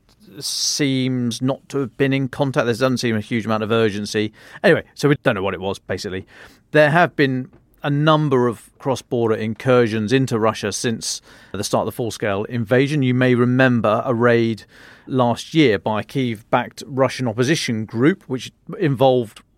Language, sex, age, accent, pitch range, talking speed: English, male, 40-59, British, 110-135 Hz, 180 wpm